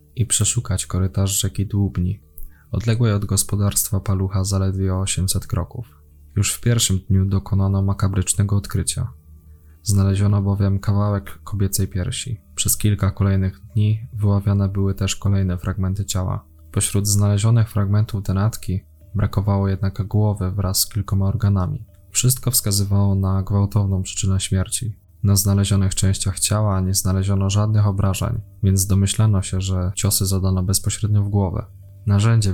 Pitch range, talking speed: 95-105 Hz, 125 wpm